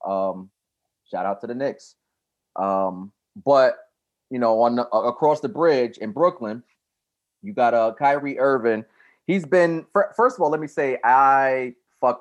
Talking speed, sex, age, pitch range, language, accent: 150 wpm, male, 30-49, 100-125 Hz, English, American